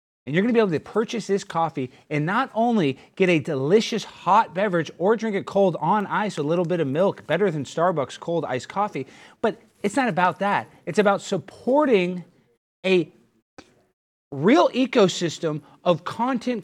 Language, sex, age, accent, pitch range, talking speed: English, male, 30-49, American, 155-200 Hz, 175 wpm